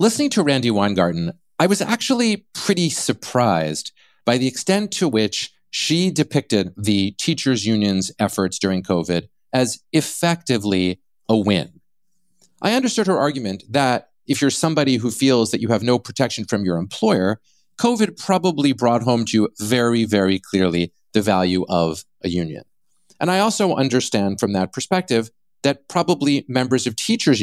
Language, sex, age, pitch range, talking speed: English, male, 40-59, 100-160 Hz, 155 wpm